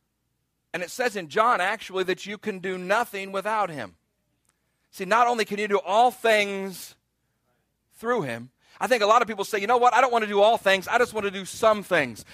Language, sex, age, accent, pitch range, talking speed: English, male, 40-59, American, 160-220 Hz, 230 wpm